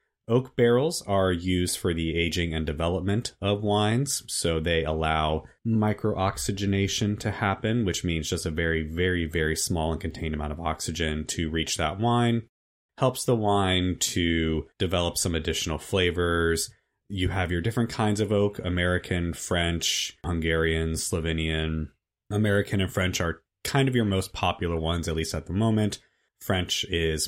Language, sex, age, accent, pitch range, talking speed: English, male, 30-49, American, 80-105 Hz, 155 wpm